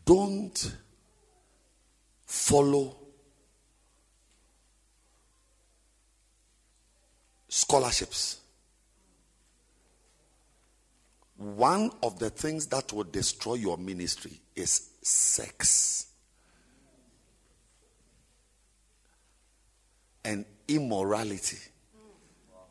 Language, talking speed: English, 40 wpm